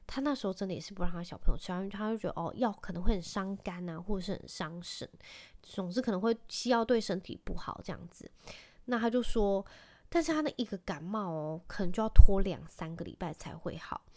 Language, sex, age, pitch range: Chinese, female, 20-39, 175-225 Hz